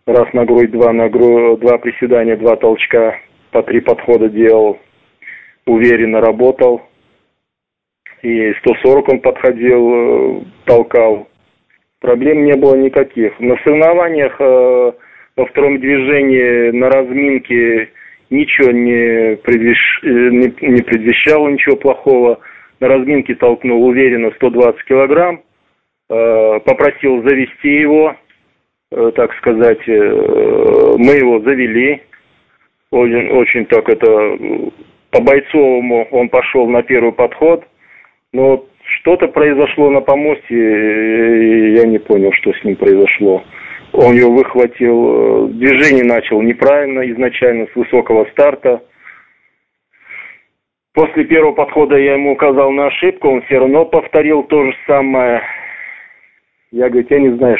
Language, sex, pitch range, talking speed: Russian, male, 120-150 Hz, 110 wpm